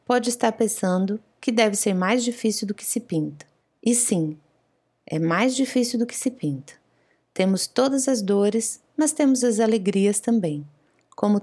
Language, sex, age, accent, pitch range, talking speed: Portuguese, female, 20-39, Brazilian, 180-240 Hz, 165 wpm